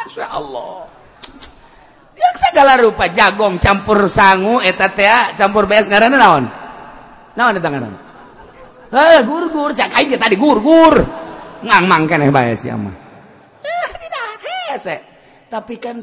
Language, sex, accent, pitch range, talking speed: Indonesian, male, native, 165-235 Hz, 100 wpm